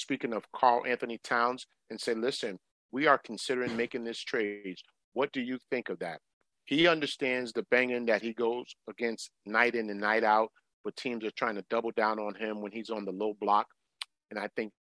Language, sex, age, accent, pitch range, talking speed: English, male, 40-59, American, 105-120 Hz, 205 wpm